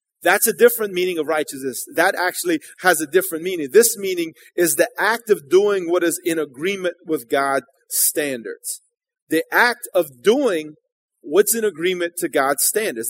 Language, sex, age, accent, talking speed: English, male, 30-49, American, 165 wpm